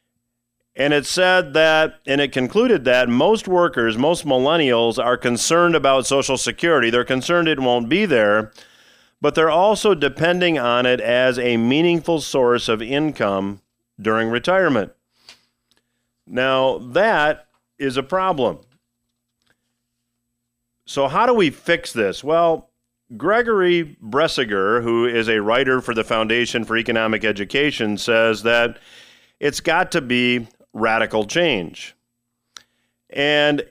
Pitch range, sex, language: 115-150 Hz, male, English